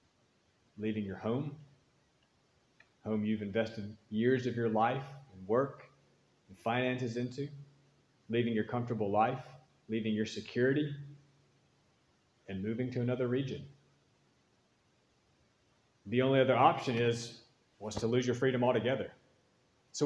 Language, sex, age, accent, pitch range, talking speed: English, male, 30-49, American, 120-145 Hz, 120 wpm